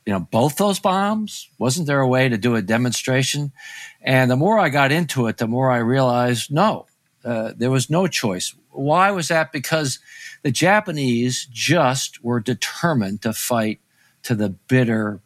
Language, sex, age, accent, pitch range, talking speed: English, male, 50-69, American, 115-165 Hz, 175 wpm